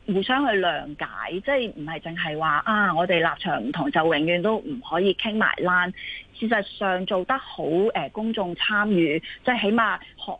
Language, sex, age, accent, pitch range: Chinese, female, 30-49, native, 165-220 Hz